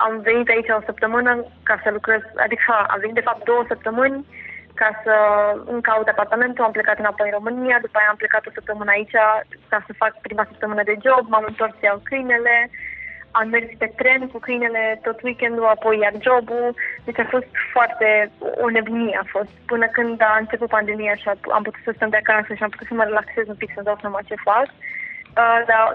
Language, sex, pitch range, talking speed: Romanian, female, 215-255 Hz, 205 wpm